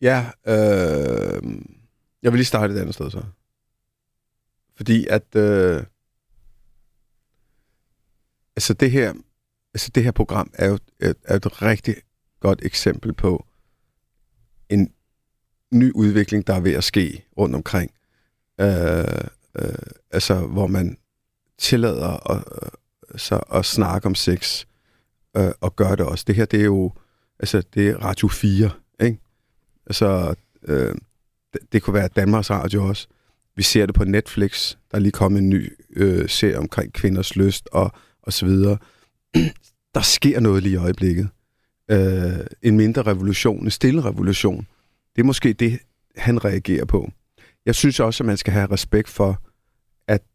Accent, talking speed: native, 150 wpm